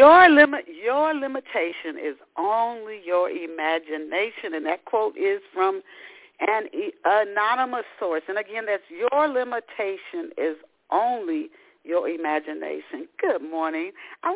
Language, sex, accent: English, female, American